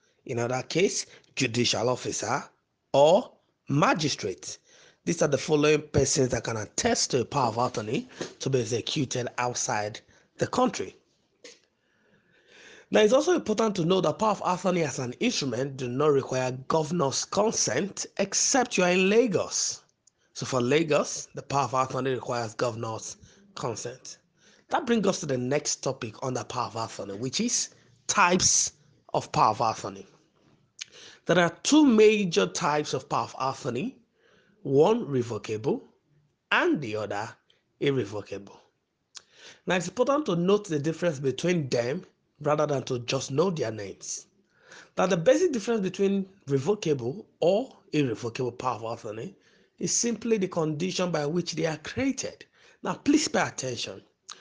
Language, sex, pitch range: English, male, 130-210 Hz